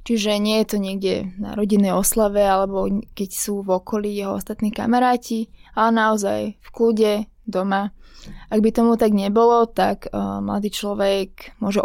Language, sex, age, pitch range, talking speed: Slovak, female, 20-39, 195-220 Hz, 150 wpm